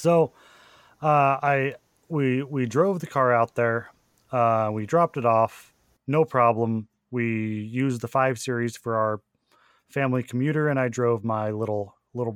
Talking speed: 155 wpm